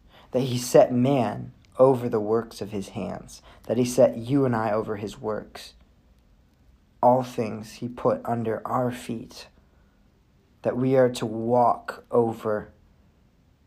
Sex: male